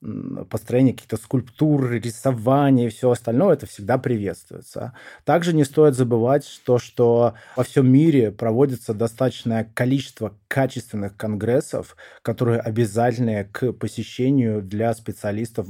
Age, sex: 20-39, male